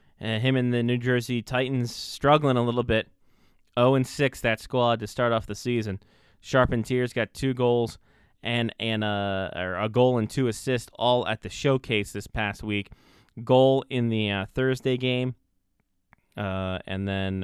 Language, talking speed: English, 175 wpm